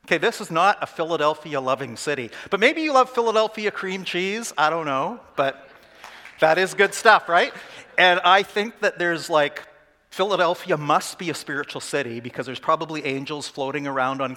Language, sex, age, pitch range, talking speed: English, male, 50-69, 135-200 Hz, 175 wpm